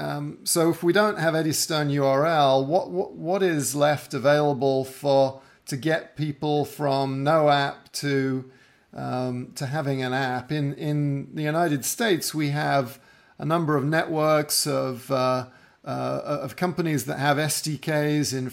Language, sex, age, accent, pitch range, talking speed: English, male, 50-69, British, 135-155 Hz, 155 wpm